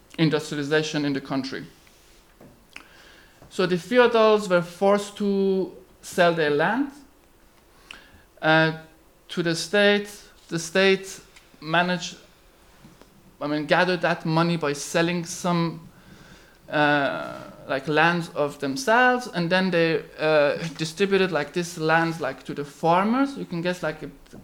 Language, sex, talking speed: English, male, 125 wpm